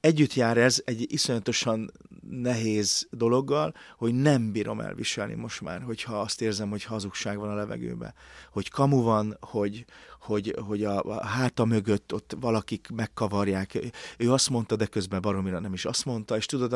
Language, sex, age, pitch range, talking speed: Hungarian, male, 30-49, 105-130 Hz, 165 wpm